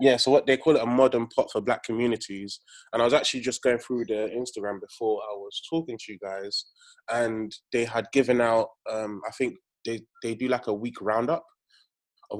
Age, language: 20-39, English